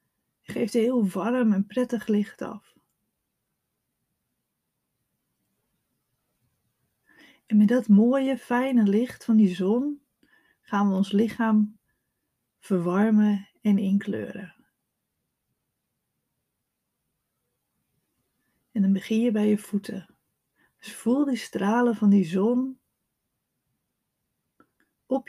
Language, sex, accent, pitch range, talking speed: Dutch, female, Dutch, 200-260 Hz, 95 wpm